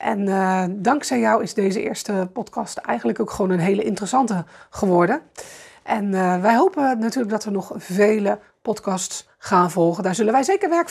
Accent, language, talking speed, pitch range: Dutch, Dutch, 175 wpm, 190-255 Hz